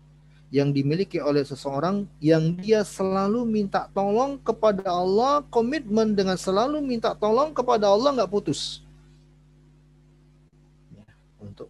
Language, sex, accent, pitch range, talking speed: Indonesian, male, native, 140-170 Hz, 110 wpm